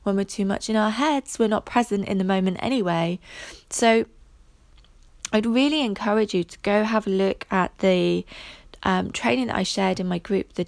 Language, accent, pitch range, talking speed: English, British, 180-215 Hz, 195 wpm